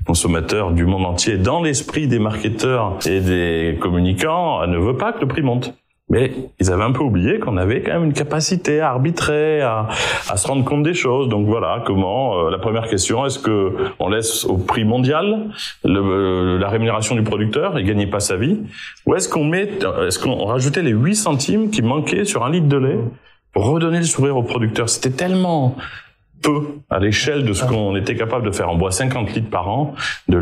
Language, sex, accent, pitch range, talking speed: French, male, French, 105-145 Hz, 205 wpm